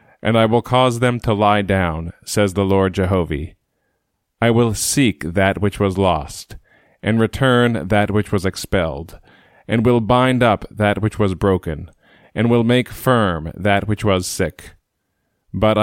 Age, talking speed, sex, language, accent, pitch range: 30-49, 160 wpm, male, English, American, 95-110 Hz